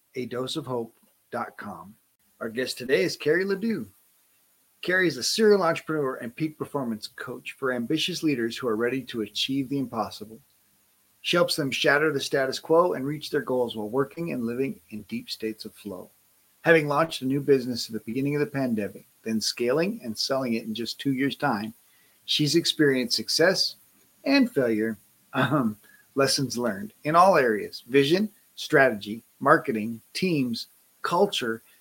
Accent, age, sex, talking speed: American, 40-59, male, 160 wpm